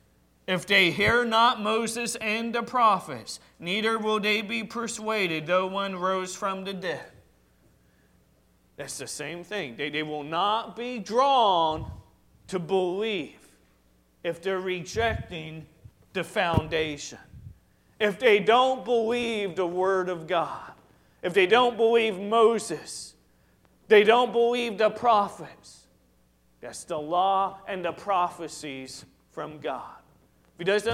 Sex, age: male, 40-59